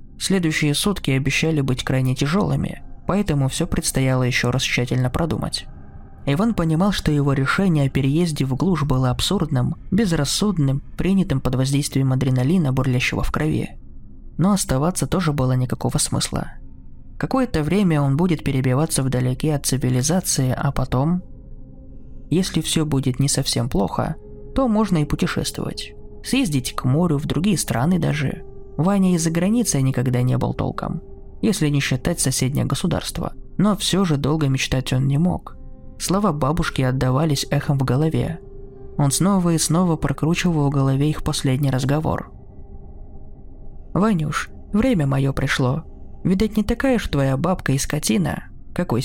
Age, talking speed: 20-39, 140 wpm